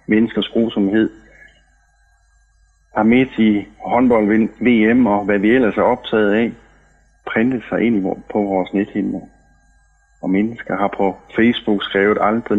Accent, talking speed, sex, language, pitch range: native, 125 wpm, male, Danish, 100-115 Hz